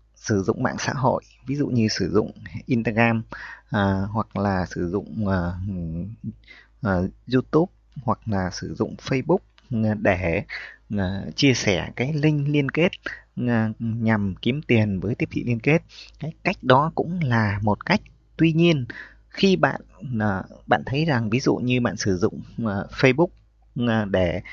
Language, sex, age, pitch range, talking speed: Vietnamese, male, 20-39, 100-135 Hz, 155 wpm